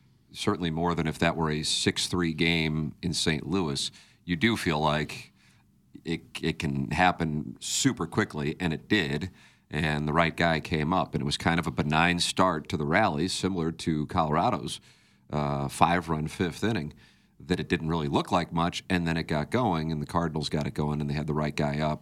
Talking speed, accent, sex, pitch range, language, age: 200 wpm, American, male, 75-90 Hz, English, 40-59